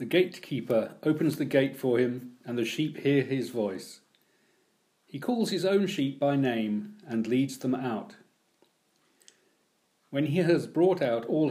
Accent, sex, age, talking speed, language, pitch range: British, male, 40-59, 155 wpm, English, 130-180 Hz